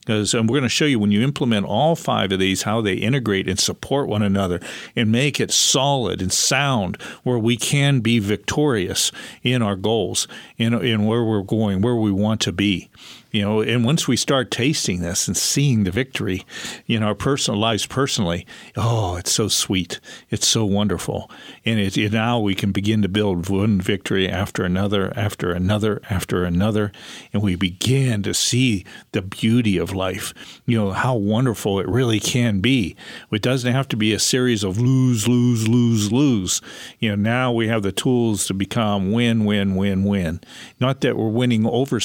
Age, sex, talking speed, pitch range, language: 50-69, male, 195 wpm, 100-120 Hz, English